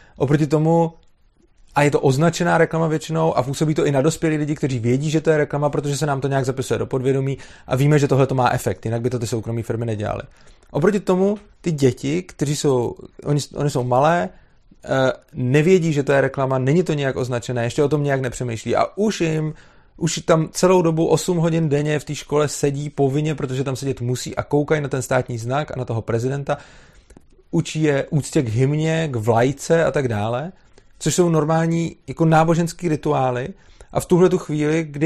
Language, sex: Czech, male